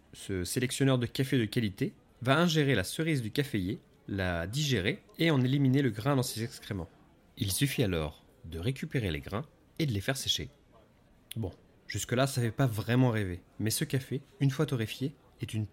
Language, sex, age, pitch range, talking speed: French, male, 30-49, 105-140 Hz, 185 wpm